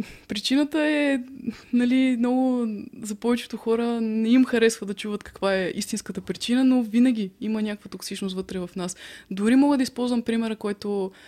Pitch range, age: 205-245 Hz, 20-39